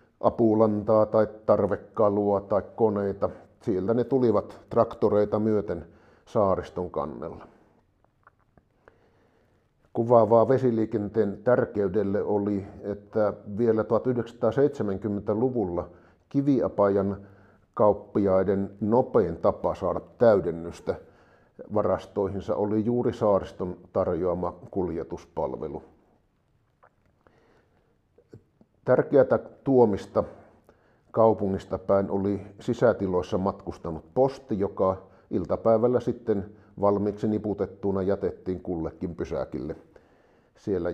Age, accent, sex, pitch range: 50-69, native, male, 100-115 Hz